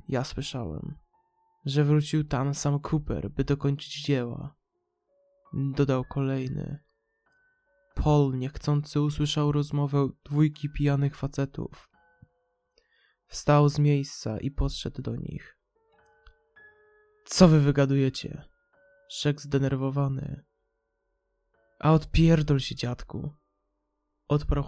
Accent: native